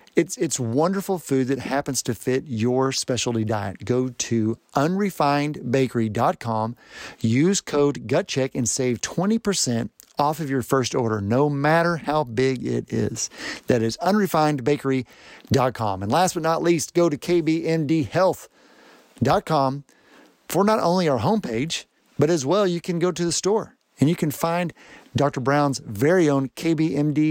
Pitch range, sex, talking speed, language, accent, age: 125-170 Hz, male, 145 wpm, English, American, 50-69